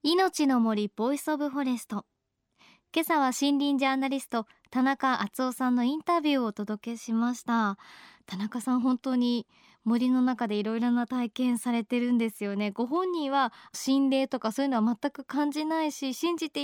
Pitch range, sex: 225-285 Hz, male